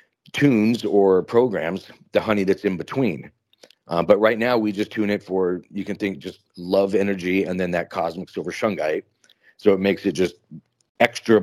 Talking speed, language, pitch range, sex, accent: 185 wpm, English, 95-115 Hz, male, American